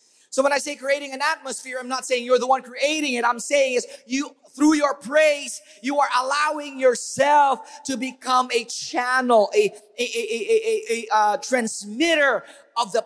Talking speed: 185 wpm